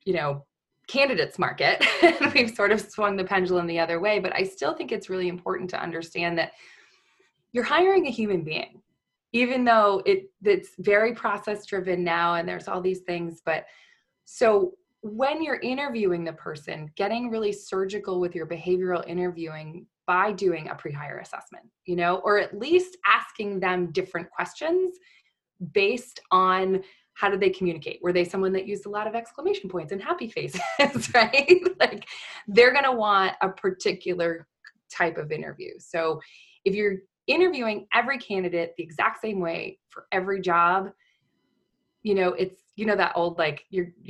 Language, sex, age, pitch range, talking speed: English, female, 20-39, 170-225 Hz, 165 wpm